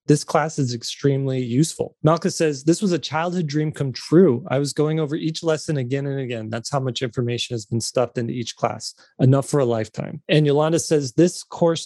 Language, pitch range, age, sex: English, 120-150 Hz, 30-49, male